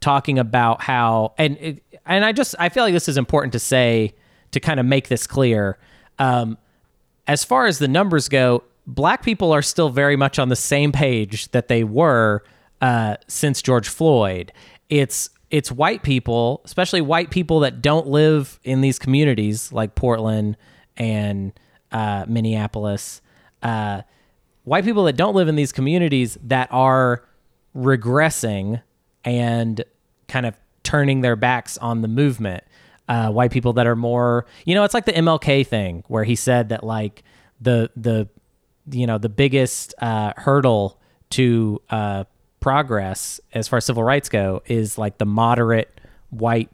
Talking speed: 160 wpm